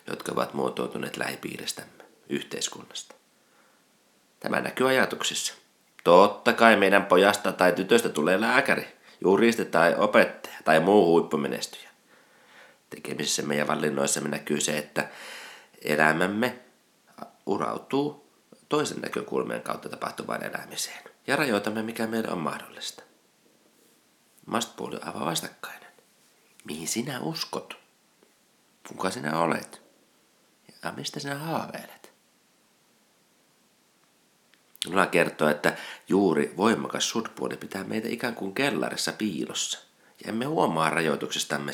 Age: 30-49